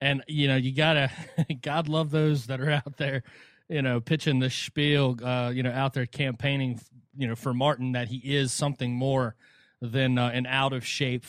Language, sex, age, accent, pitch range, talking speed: English, male, 30-49, American, 125-145 Hz, 195 wpm